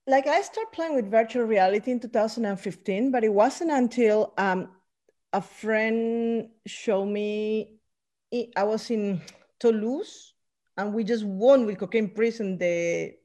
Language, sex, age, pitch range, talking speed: English, female, 40-59, 190-255 Hz, 135 wpm